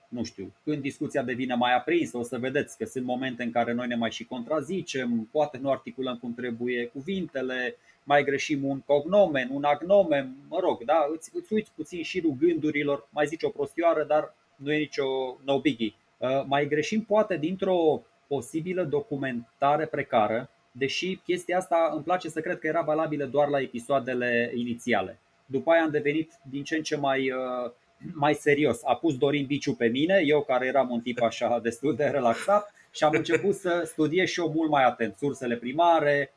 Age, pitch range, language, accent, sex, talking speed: 20-39, 130-165 Hz, Romanian, native, male, 185 wpm